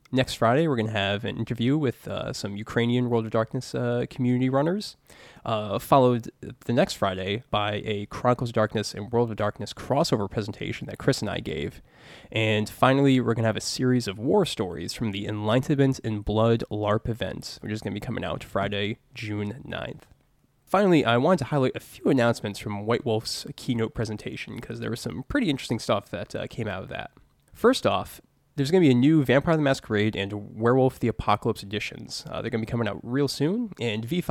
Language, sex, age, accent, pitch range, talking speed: English, male, 20-39, American, 105-130 Hz, 210 wpm